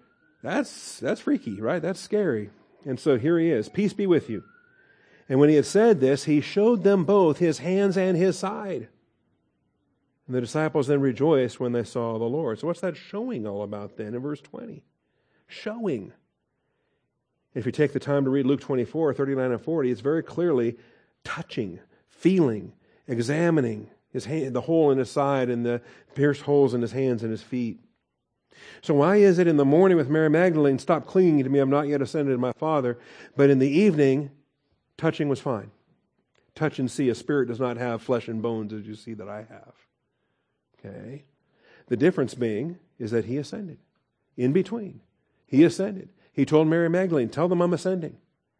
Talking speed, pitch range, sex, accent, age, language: 185 wpm, 125-170 Hz, male, American, 50-69, English